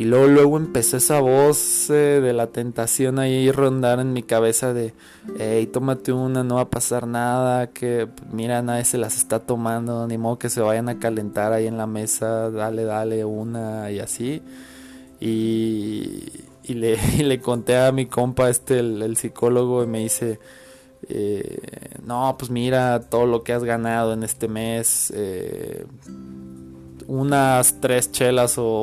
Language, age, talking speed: Spanish, 20-39, 165 wpm